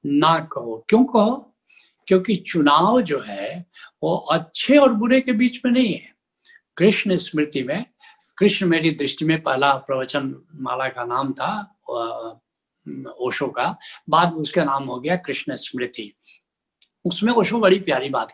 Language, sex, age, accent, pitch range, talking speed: Hindi, male, 60-79, native, 150-215 Hz, 145 wpm